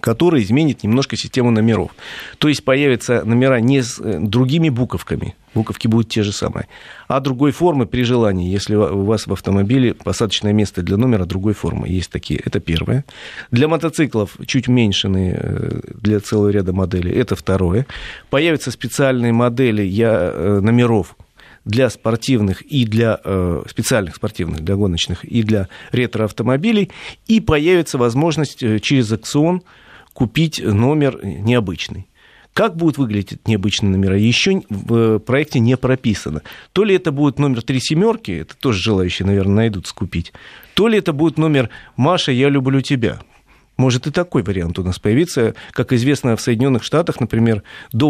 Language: Russian